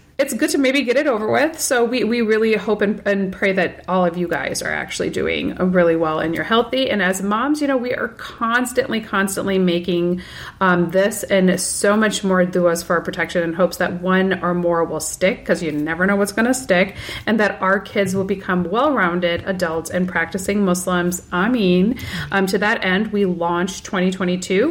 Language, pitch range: English, 175-205 Hz